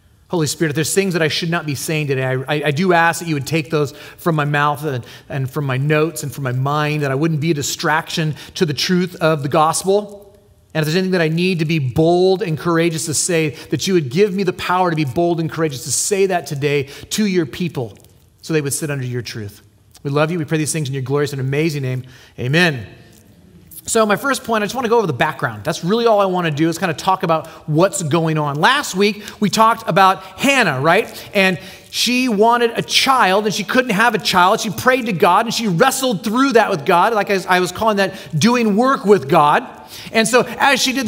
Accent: American